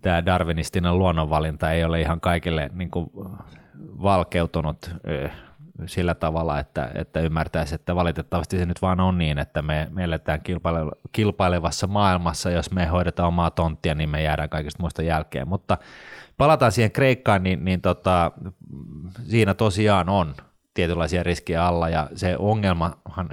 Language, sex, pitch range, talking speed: Finnish, male, 80-95 Hz, 135 wpm